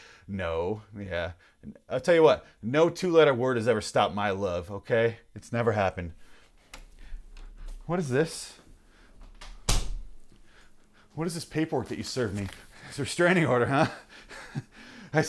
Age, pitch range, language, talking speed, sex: 30-49, 115-165 Hz, English, 135 wpm, male